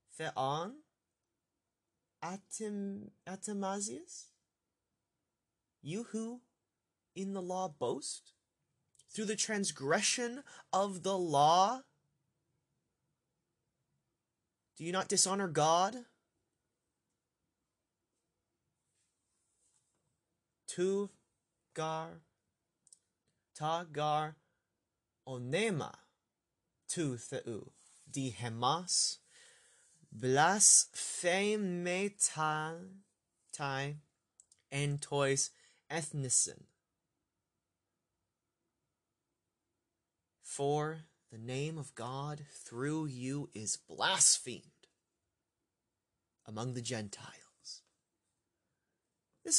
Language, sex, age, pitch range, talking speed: English, male, 20-39, 130-190 Hz, 50 wpm